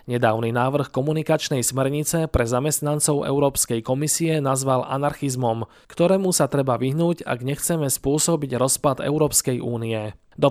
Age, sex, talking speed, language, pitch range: 20-39, male, 120 wpm, Slovak, 125-155 Hz